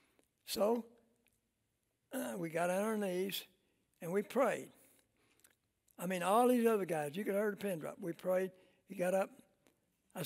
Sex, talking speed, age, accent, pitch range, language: male, 170 wpm, 60-79, American, 165-210 Hz, English